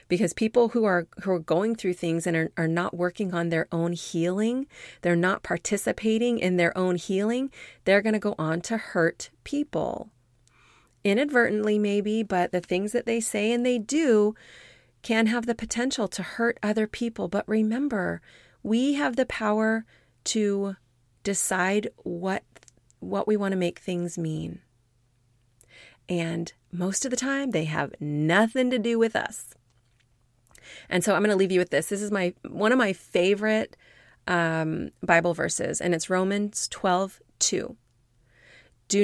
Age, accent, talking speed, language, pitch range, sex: 30-49, American, 160 wpm, English, 160-210 Hz, female